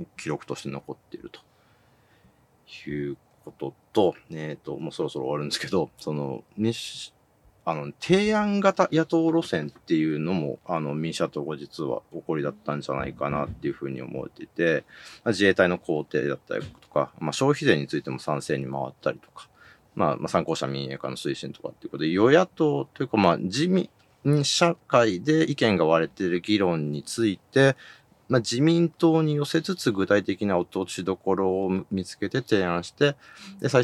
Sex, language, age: male, Japanese, 40-59